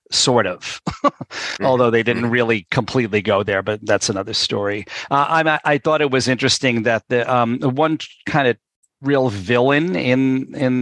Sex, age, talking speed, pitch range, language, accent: male, 40-59, 165 wpm, 115-130 Hz, English, American